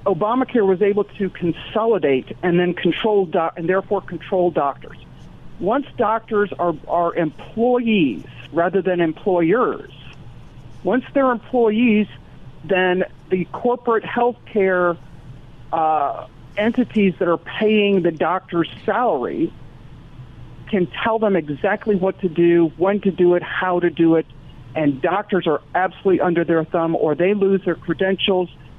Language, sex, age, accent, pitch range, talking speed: English, male, 50-69, American, 155-205 Hz, 130 wpm